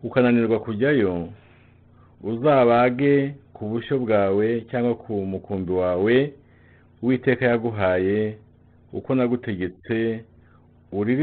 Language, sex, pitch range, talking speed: English, male, 100-125 Hz, 80 wpm